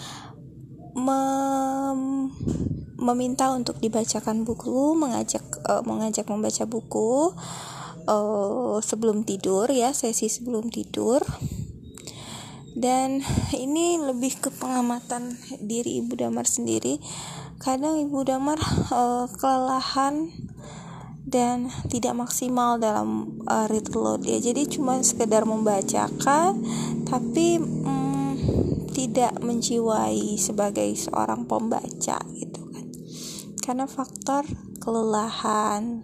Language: Indonesian